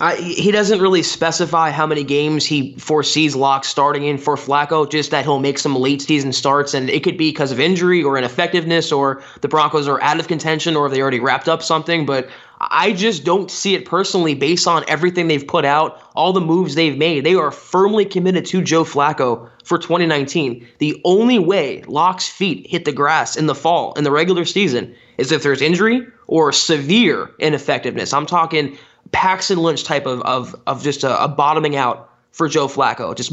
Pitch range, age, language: 140-175 Hz, 20-39, English